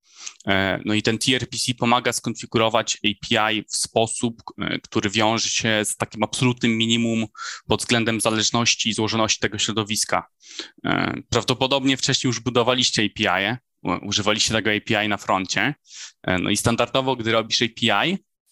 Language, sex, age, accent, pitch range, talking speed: Polish, male, 20-39, native, 105-125 Hz, 125 wpm